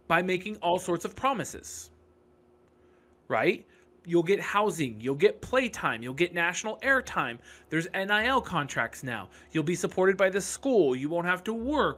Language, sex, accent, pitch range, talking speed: English, male, American, 145-195 Hz, 160 wpm